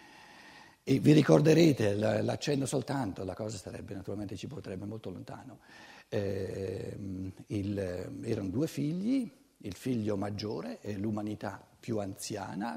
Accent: native